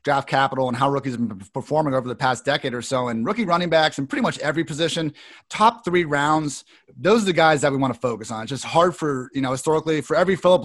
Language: English